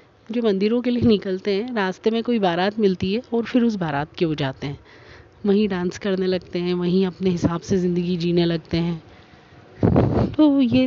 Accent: native